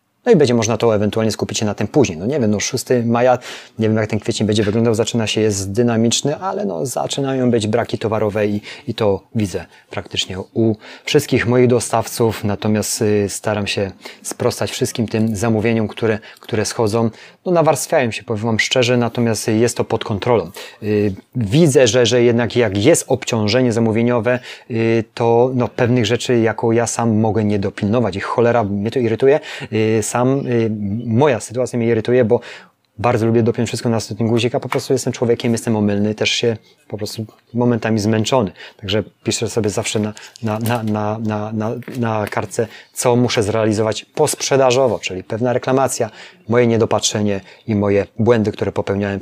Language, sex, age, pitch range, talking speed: Polish, male, 30-49, 105-120 Hz, 175 wpm